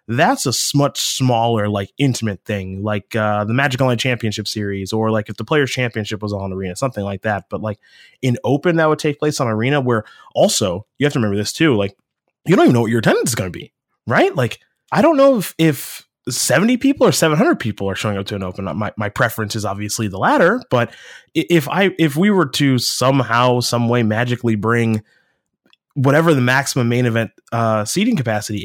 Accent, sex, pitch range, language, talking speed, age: American, male, 110-150 Hz, English, 210 wpm, 20-39